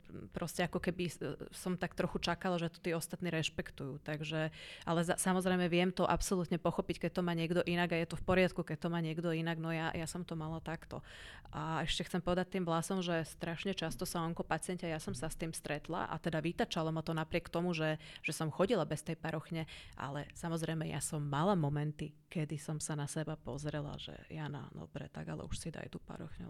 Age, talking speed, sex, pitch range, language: 30-49, 215 wpm, female, 160-180 Hz, Slovak